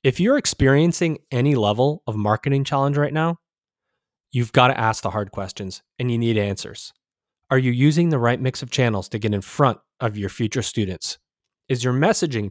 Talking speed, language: 190 wpm, English